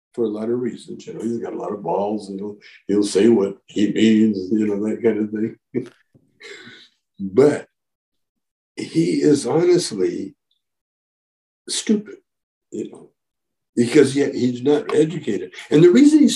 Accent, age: American, 60-79